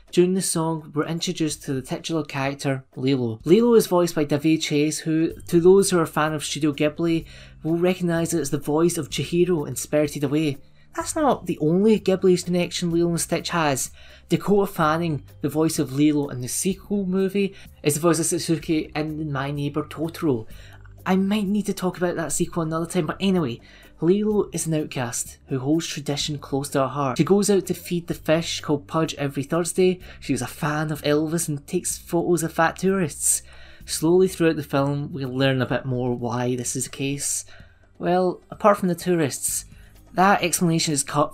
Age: 20-39